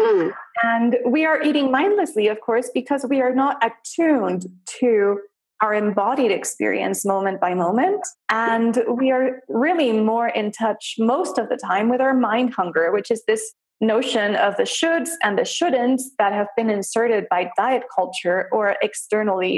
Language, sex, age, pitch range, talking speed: English, female, 30-49, 215-265 Hz, 160 wpm